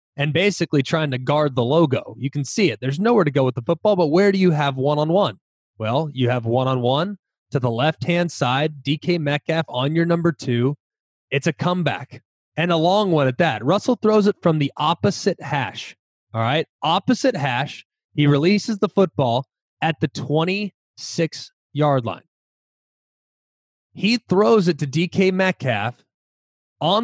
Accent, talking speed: American, 160 wpm